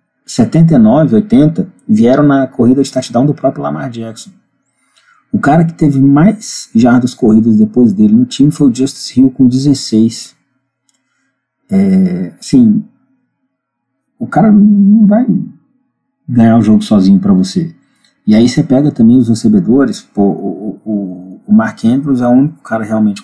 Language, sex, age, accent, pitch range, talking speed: Portuguese, male, 40-59, Brazilian, 125-210 Hz, 150 wpm